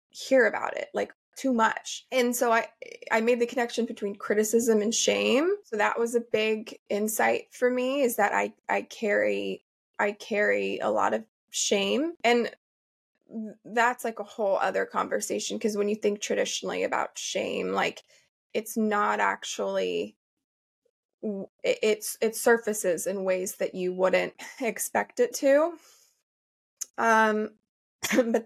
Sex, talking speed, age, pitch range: female, 140 wpm, 20-39, 210-250 Hz